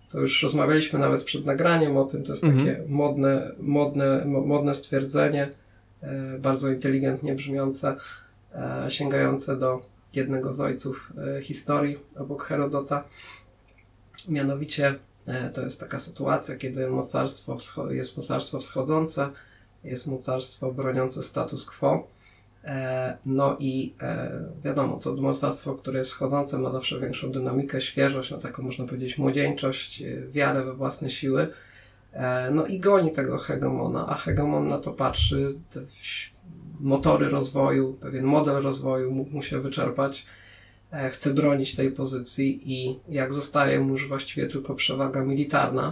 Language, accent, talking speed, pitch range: Polish, native, 130 wpm, 130-140 Hz